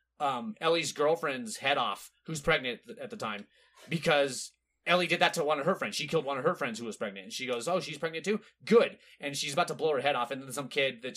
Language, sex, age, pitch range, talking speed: English, male, 30-49, 140-195 Hz, 270 wpm